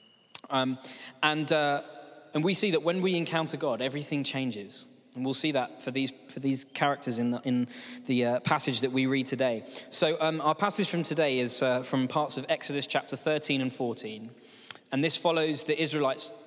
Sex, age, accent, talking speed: male, 20-39, British, 195 wpm